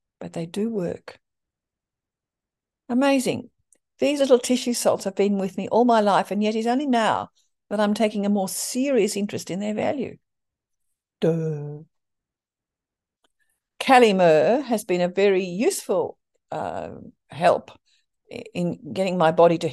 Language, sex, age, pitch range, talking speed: English, female, 50-69, 175-235 Hz, 135 wpm